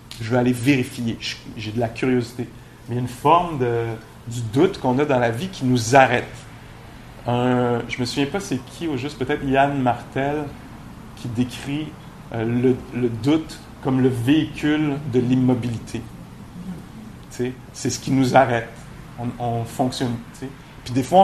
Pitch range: 120-145 Hz